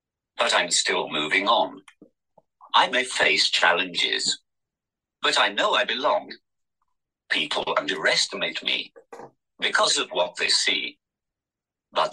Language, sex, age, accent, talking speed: English, male, 50-69, British, 115 wpm